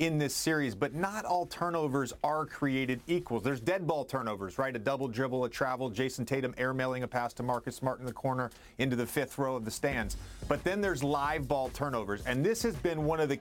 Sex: male